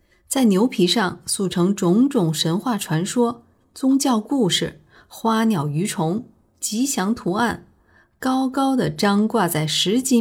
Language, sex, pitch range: Chinese, female, 165-235 Hz